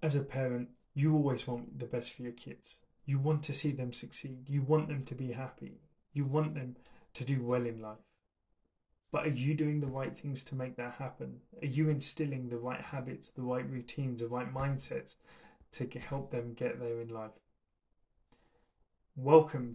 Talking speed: 190 wpm